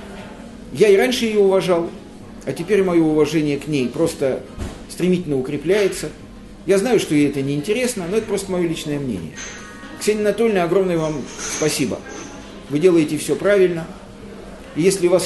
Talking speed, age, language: 145 wpm, 50-69, Russian